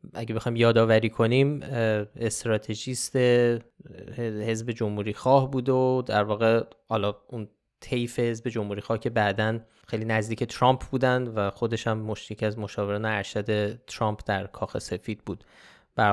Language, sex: Persian, male